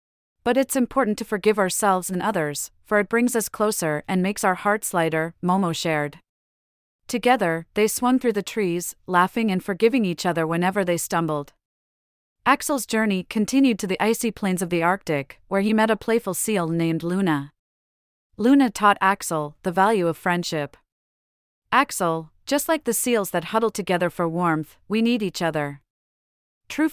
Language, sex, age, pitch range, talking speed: English, female, 30-49, 165-215 Hz, 165 wpm